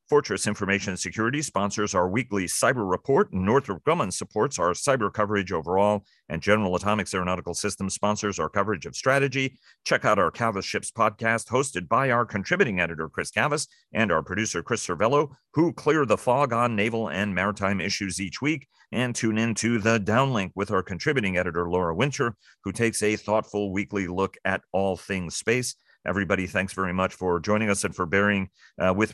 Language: English